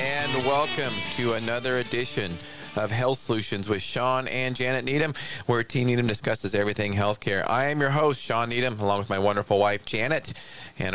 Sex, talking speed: male, 175 wpm